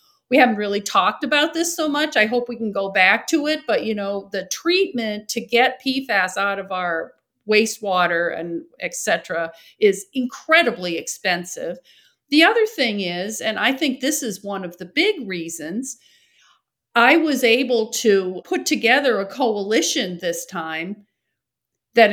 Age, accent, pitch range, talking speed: 50-69, American, 190-275 Hz, 160 wpm